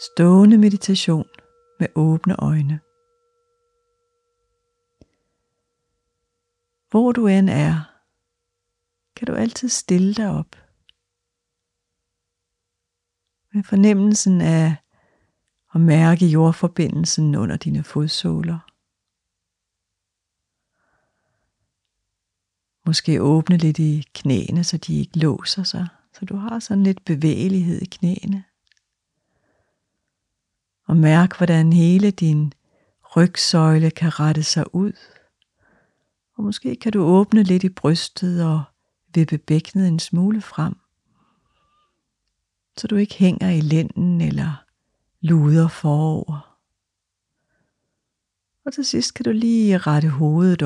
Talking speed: 100 wpm